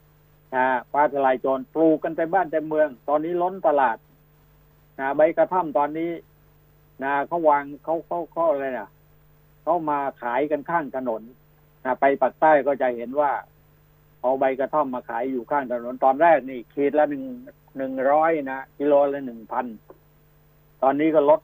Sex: male